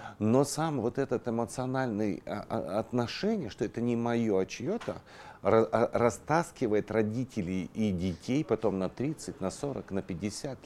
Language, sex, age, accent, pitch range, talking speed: Russian, male, 40-59, native, 95-120 Hz, 135 wpm